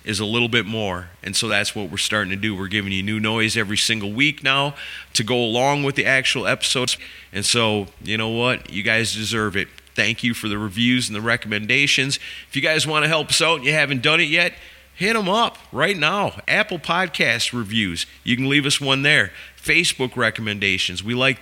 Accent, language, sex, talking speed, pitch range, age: American, English, male, 220 wpm, 105-135 Hz, 40-59